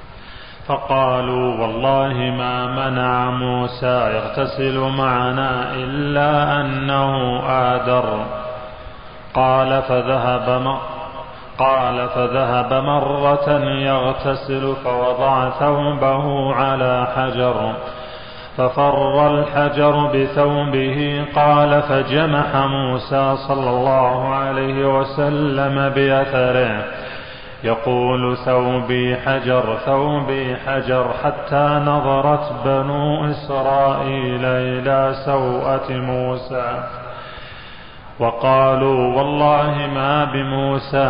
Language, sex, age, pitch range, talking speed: Arabic, male, 30-49, 125-145 Hz, 70 wpm